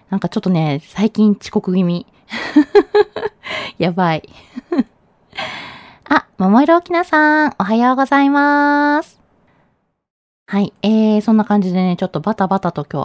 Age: 20-39